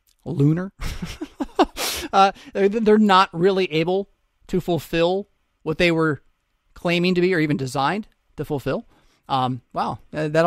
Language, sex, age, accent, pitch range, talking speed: English, male, 30-49, American, 150-200 Hz, 125 wpm